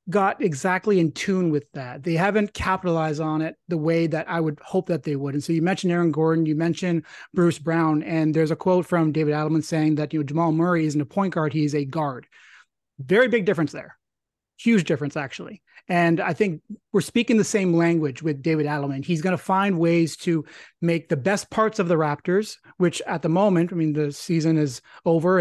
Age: 30-49